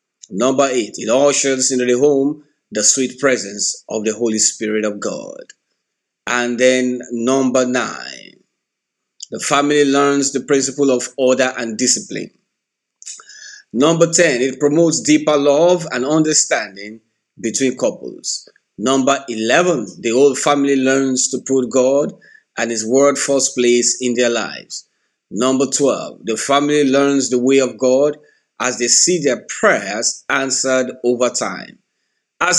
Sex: male